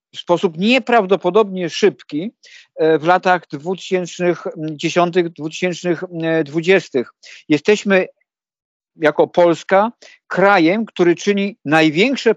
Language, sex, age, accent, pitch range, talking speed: Polish, male, 50-69, native, 160-190 Hz, 70 wpm